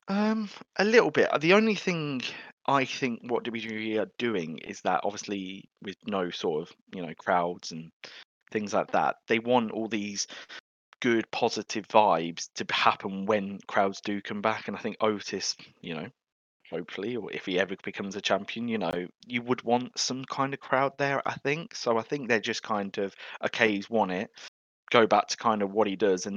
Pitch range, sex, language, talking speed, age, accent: 95-115 Hz, male, English, 200 wpm, 20-39, British